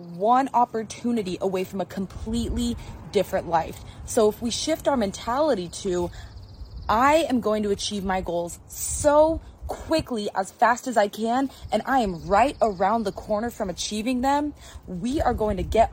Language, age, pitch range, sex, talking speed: English, 20-39, 190-235 Hz, female, 165 wpm